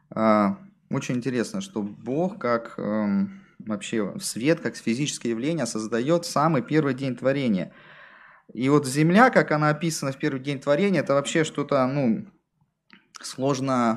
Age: 20-39